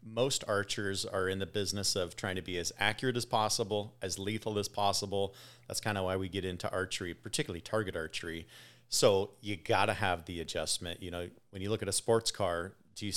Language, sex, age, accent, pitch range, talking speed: English, male, 30-49, American, 95-120 Hz, 215 wpm